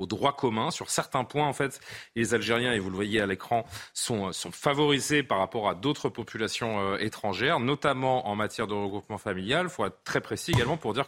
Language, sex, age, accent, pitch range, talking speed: French, male, 30-49, French, 110-150 Hz, 210 wpm